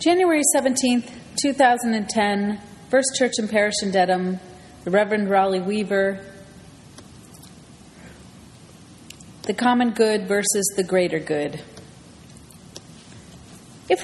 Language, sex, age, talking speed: English, female, 30-49, 90 wpm